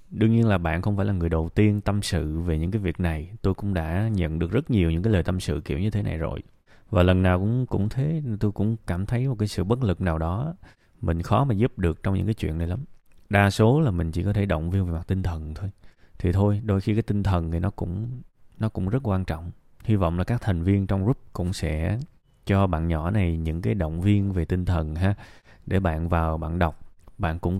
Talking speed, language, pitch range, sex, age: 260 wpm, Vietnamese, 85-110 Hz, male, 20-39